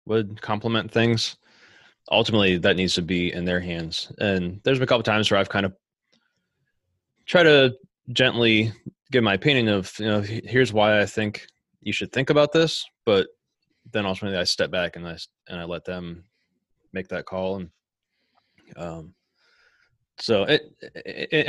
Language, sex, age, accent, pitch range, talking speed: English, male, 20-39, American, 90-115 Hz, 170 wpm